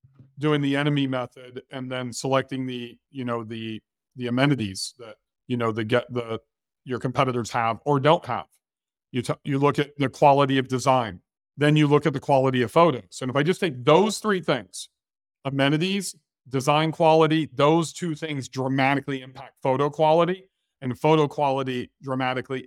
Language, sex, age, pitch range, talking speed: English, male, 40-59, 130-155 Hz, 170 wpm